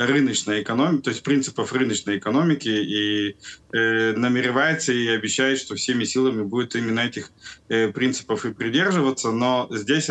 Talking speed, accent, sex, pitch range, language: 135 wpm, native, male, 110-135 Hz, Russian